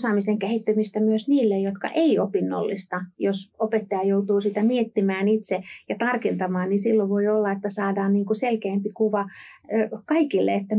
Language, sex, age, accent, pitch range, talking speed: Finnish, female, 30-49, native, 195-220 Hz, 145 wpm